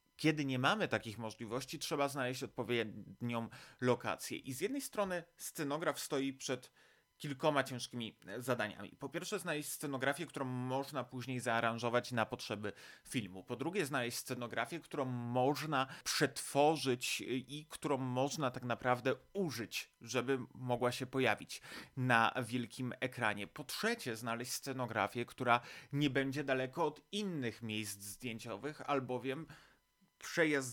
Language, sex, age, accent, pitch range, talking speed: Polish, male, 30-49, native, 115-135 Hz, 125 wpm